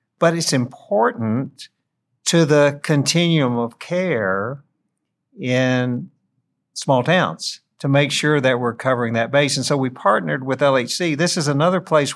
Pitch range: 115-145 Hz